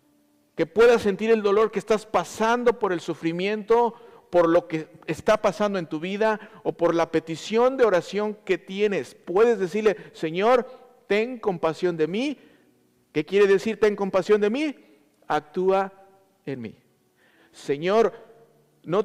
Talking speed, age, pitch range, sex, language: 145 wpm, 50-69, 160-220 Hz, male, Spanish